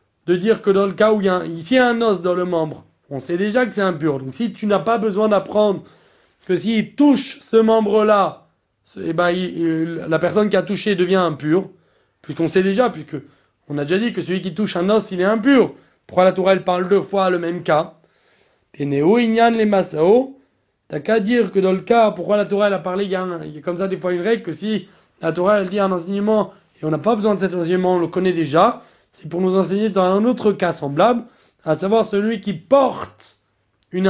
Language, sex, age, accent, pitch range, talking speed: French, male, 30-49, French, 170-210 Hz, 230 wpm